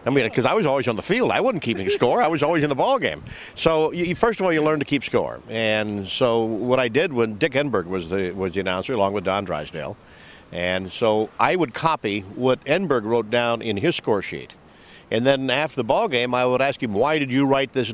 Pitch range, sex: 115-140 Hz, male